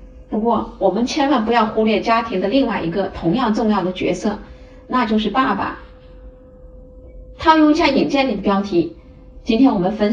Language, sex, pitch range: Chinese, female, 190-265 Hz